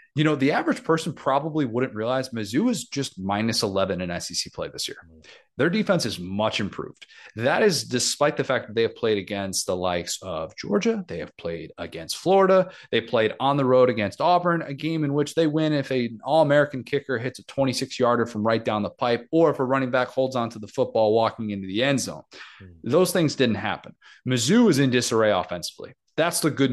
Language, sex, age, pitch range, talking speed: English, male, 30-49, 110-140 Hz, 210 wpm